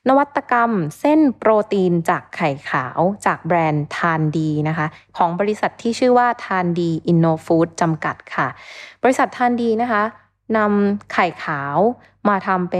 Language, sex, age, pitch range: Thai, female, 20-39, 175-235 Hz